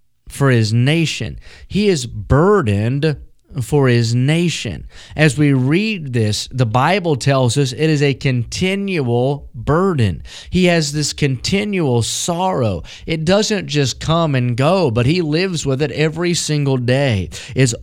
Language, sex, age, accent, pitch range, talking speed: English, male, 30-49, American, 125-170 Hz, 140 wpm